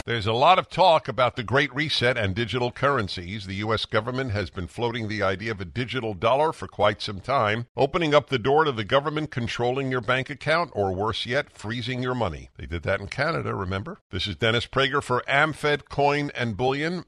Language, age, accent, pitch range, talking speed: English, 50-69, American, 105-135 Hz, 210 wpm